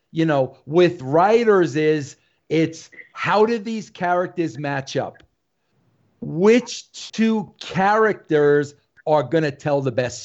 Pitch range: 145-195 Hz